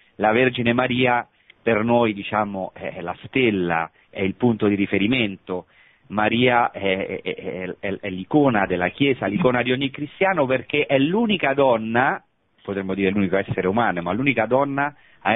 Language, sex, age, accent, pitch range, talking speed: Italian, male, 40-59, native, 95-125 Hz, 155 wpm